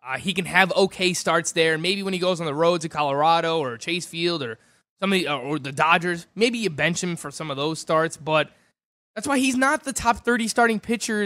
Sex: male